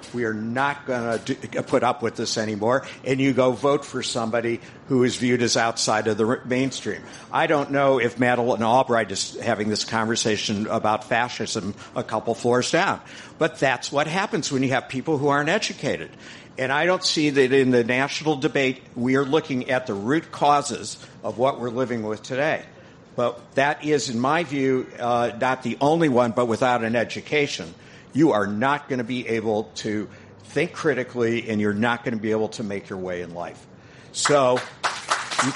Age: 60-79